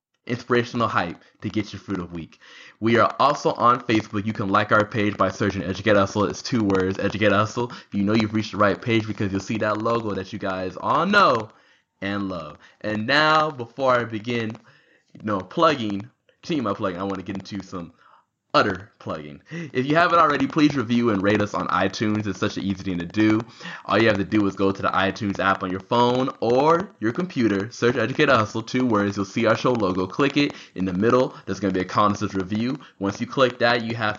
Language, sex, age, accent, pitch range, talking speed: English, male, 20-39, American, 100-120 Hz, 225 wpm